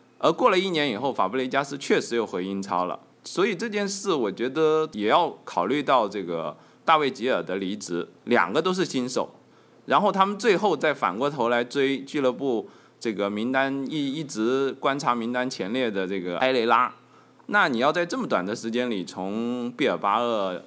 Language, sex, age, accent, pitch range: Chinese, male, 20-39, native, 100-150 Hz